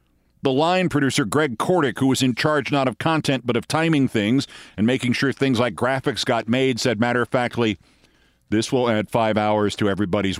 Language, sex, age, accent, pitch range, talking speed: English, male, 50-69, American, 110-145 Hz, 200 wpm